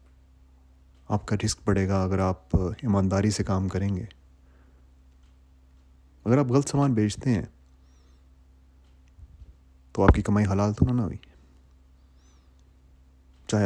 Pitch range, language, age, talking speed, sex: 65-105 Hz, Urdu, 30-49, 120 wpm, male